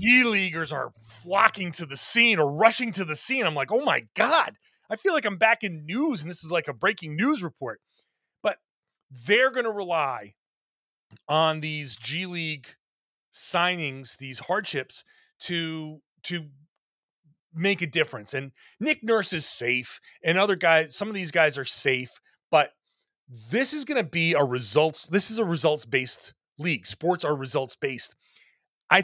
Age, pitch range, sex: 30-49, 150-220 Hz, male